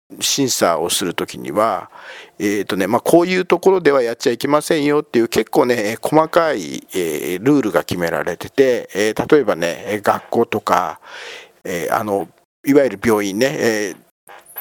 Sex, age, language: male, 50-69, Japanese